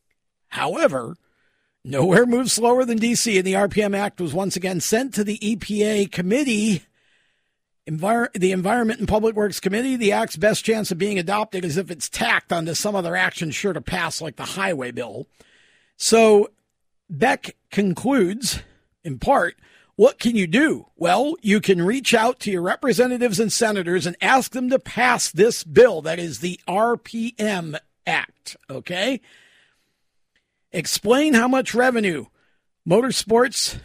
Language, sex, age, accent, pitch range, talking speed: English, male, 50-69, American, 180-235 Hz, 145 wpm